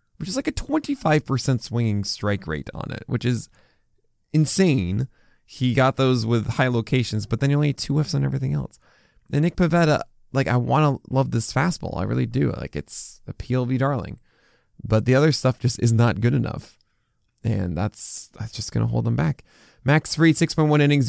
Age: 20-39